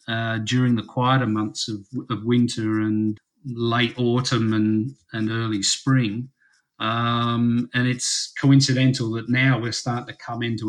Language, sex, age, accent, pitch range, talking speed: English, male, 40-59, Australian, 110-125 Hz, 145 wpm